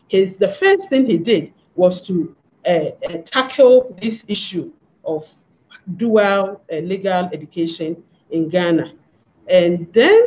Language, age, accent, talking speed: English, 50-69, Nigerian, 130 wpm